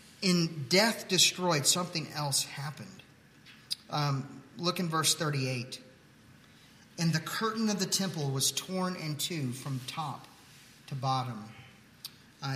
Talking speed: 125 wpm